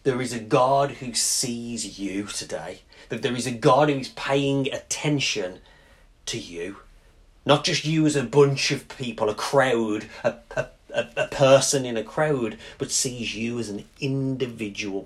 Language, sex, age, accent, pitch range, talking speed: English, male, 30-49, British, 90-130 Hz, 165 wpm